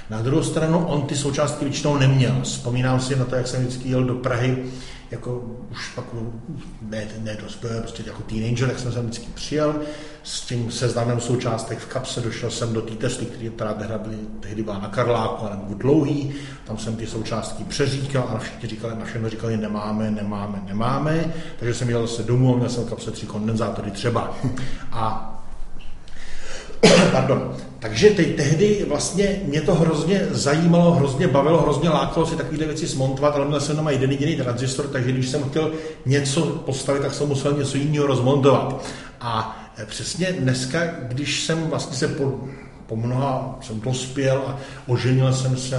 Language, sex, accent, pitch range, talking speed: Czech, male, native, 115-145 Hz, 170 wpm